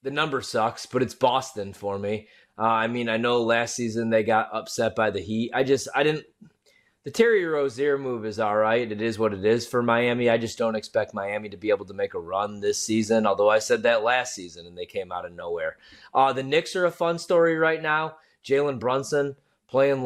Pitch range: 110-145 Hz